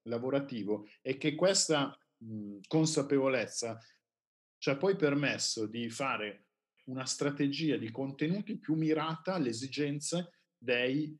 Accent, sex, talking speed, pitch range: native, male, 105 wpm, 110-155 Hz